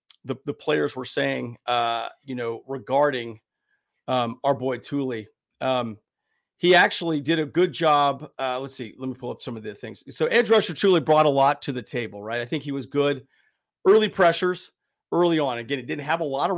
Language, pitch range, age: English, 125-165 Hz, 40-59